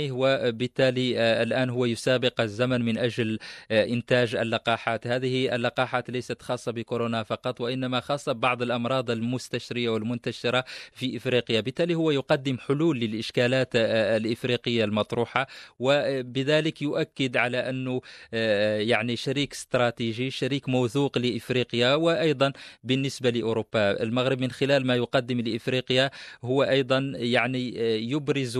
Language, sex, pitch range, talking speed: English, male, 115-130 Hz, 115 wpm